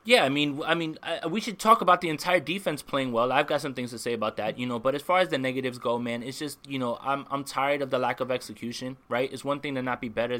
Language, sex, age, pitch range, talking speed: English, male, 20-39, 130-165 Hz, 300 wpm